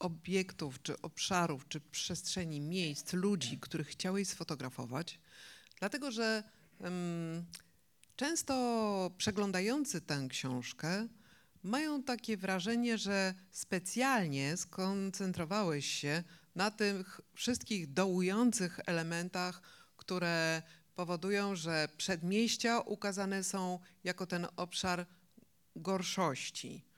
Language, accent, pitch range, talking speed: Polish, native, 160-205 Hz, 85 wpm